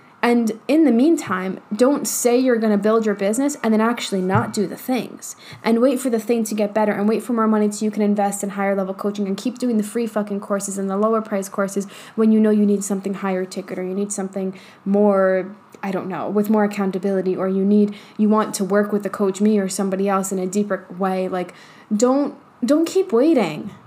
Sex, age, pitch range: female, 10-29, 205-260 Hz